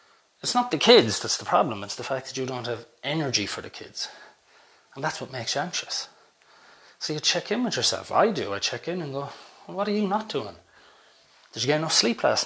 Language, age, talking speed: English, 30-49, 230 wpm